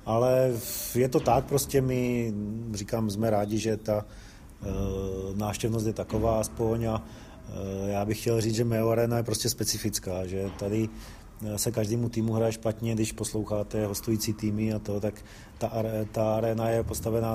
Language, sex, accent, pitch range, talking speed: Czech, male, native, 110-120 Hz, 150 wpm